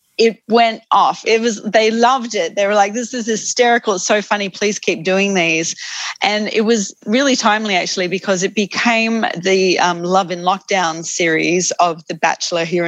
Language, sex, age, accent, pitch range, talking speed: English, female, 30-49, Australian, 175-220 Hz, 185 wpm